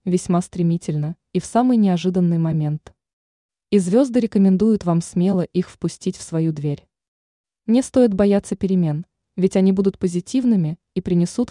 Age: 20-39